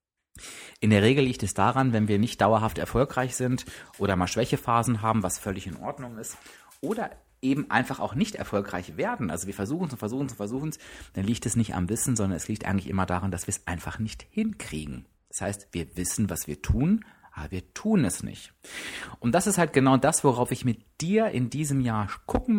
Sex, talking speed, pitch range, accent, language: male, 220 wpm, 100-135 Hz, German, German